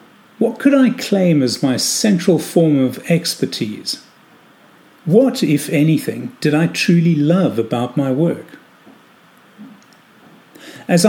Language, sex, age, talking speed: English, male, 50-69, 115 wpm